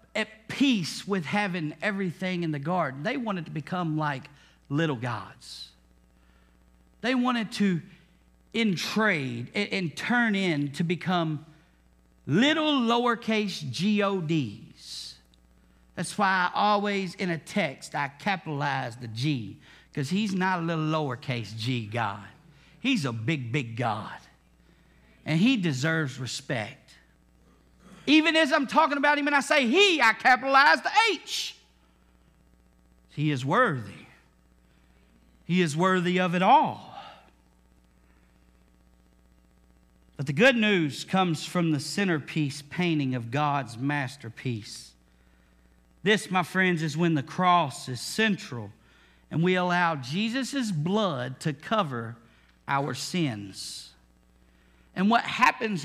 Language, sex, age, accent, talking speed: English, male, 50-69, American, 120 wpm